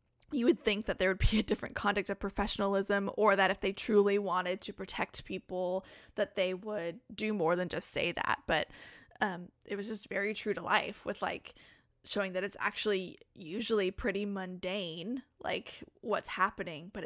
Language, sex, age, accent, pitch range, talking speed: English, female, 20-39, American, 185-215 Hz, 185 wpm